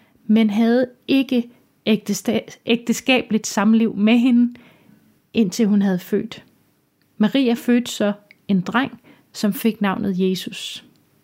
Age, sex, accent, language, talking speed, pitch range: 30-49, female, native, Danish, 105 wpm, 200-235 Hz